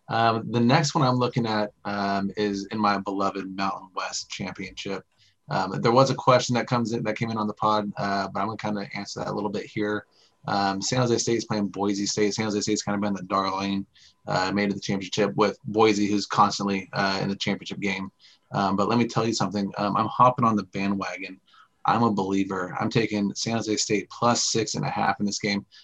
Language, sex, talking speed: English, male, 235 wpm